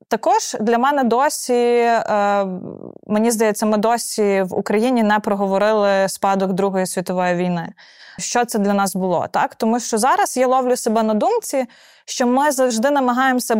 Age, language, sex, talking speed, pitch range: 20-39, Ukrainian, female, 150 wpm, 200-245 Hz